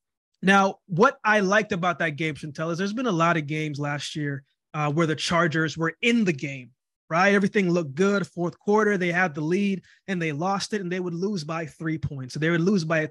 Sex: male